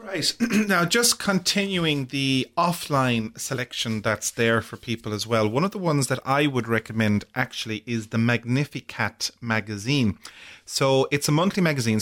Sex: male